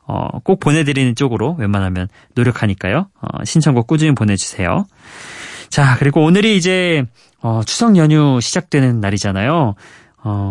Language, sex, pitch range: Korean, male, 105-155 Hz